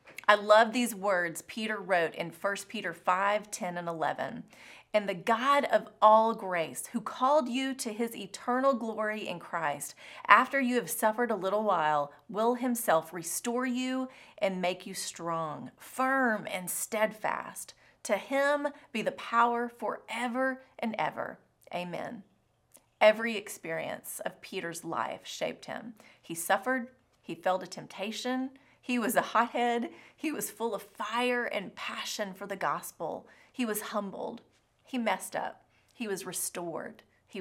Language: English